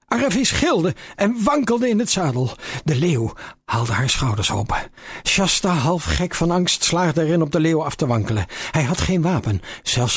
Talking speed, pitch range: 185 wpm, 120-165 Hz